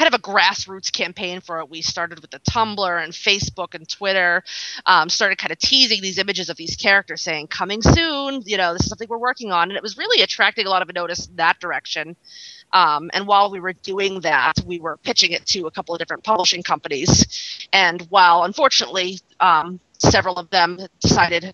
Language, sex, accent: English, female, American